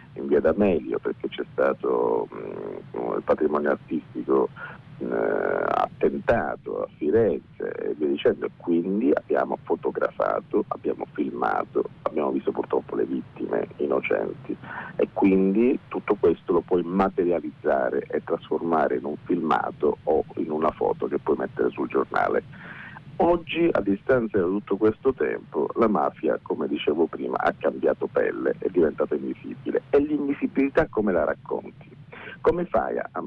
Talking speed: 135 wpm